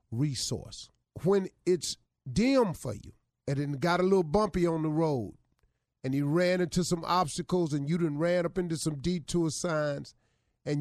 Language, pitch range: English, 130-180 Hz